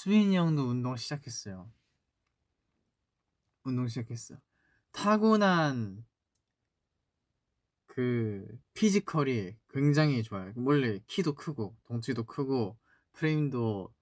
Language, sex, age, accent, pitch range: Korean, male, 20-39, native, 105-130 Hz